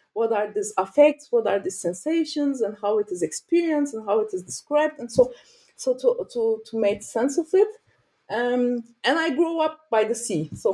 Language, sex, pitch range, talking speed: English, female, 205-295 Hz, 205 wpm